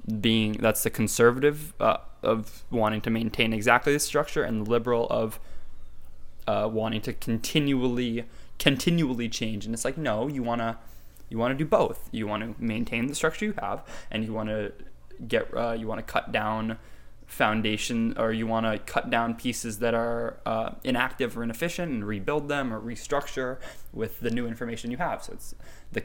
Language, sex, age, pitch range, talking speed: English, male, 20-39, 110-120 Hz, 175 wpm